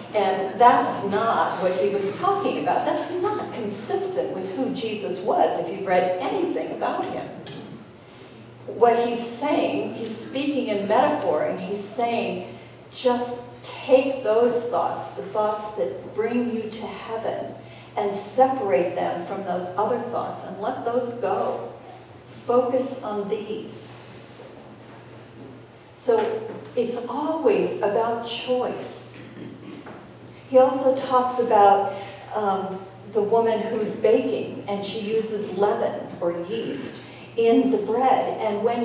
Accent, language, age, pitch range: American, English, 50-69, 210-255 Hz